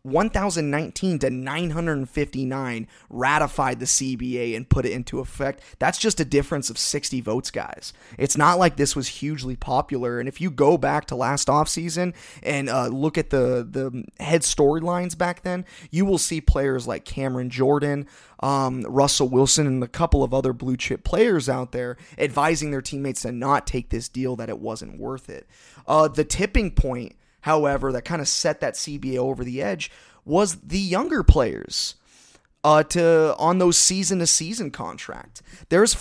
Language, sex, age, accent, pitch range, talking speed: English, male, 20-39, American, 130-165 Hz, 170 wpm